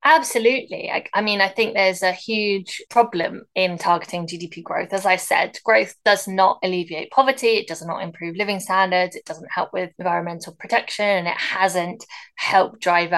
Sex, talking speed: female, 180 wpm